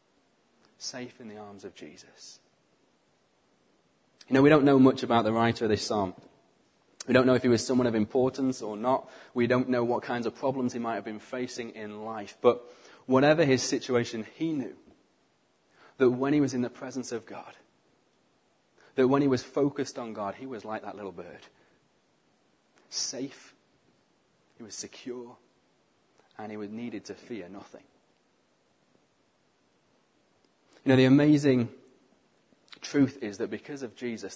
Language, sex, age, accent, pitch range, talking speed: English, male, 30-49, British, 115-135 Hz, 160 wpm